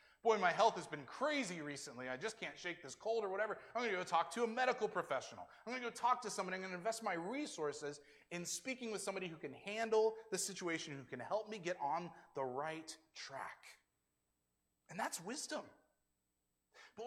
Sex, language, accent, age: male, English, American, 30-49